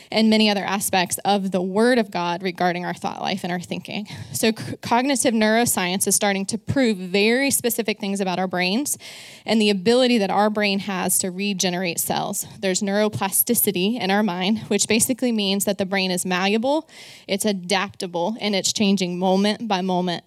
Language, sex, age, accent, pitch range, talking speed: English, female, 20-39, American, 185-215 Hz, 180 wpm